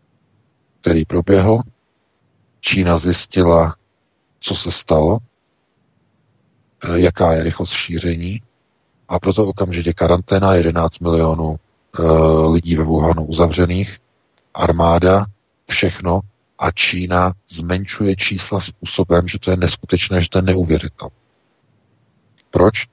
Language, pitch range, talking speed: Czech, 85-105 Hz, 95 wpm